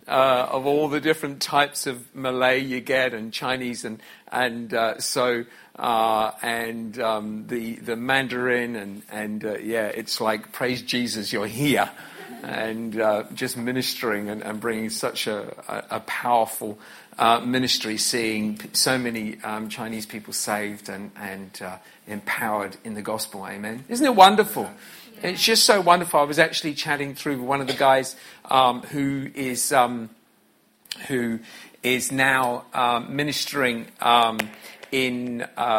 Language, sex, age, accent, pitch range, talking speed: English, male, 50-69, British, 115-150 Hz, 150 wpm